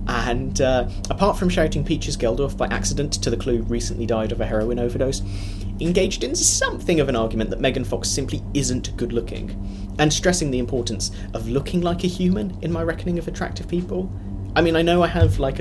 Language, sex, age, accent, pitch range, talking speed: English, male, 30-49, British, 95-120 Hz, 205 wpm